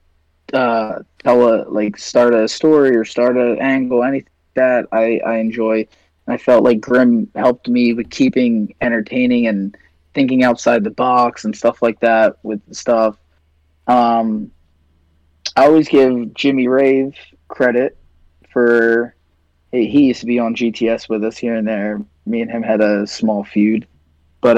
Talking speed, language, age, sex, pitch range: 160 wpm, English, 20-39, male, 105-140 Hz